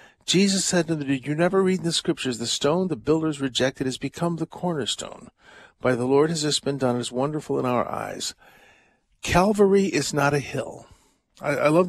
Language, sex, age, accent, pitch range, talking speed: English, male, 50-69, American, 135-170 Hz, 190 wpm